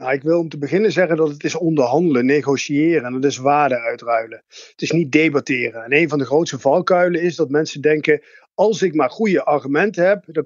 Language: Dutch